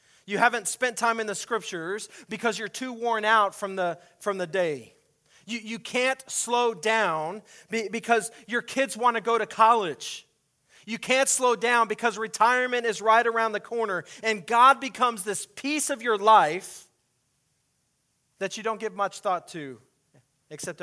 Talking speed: 160 wpm